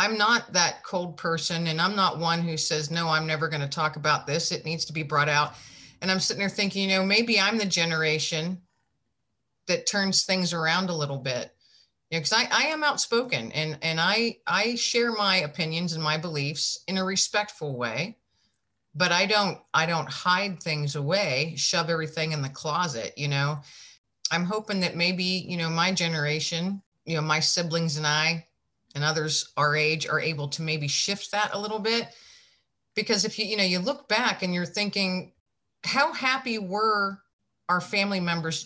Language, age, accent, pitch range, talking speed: English, 40-59, American, 155-200 Hz, 190 wpm